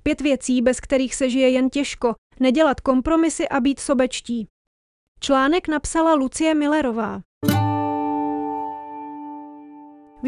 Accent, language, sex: Czech, English, female